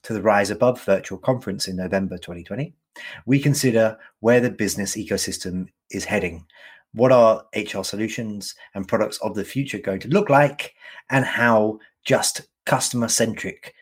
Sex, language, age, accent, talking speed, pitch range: male, English, 30-49, British, 150 wpm, 95-135 Hz